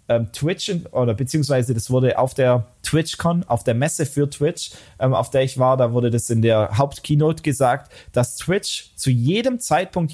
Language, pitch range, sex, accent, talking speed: German, 120-155 Hz, male, German, 170 wpm